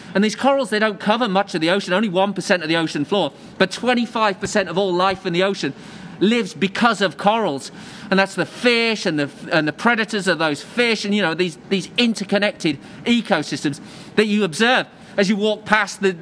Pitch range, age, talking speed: 180-220 Hz, 40-59, 205 wpm